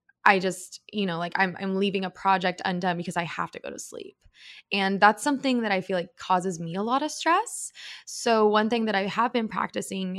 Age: 20-39